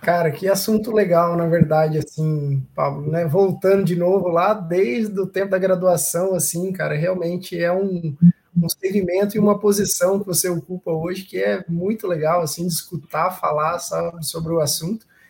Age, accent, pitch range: 20-39, Brazilian, 175-205 Hz